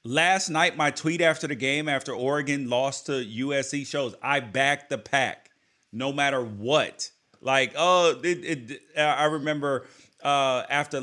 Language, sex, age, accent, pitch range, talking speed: English, male, 30-49, American, 125-165 Hz, 140 wpm